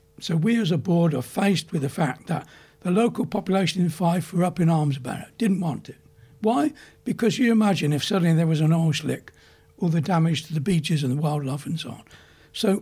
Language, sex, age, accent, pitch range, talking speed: English, male, 60-79, British, 145-195 Hz, 230 wpm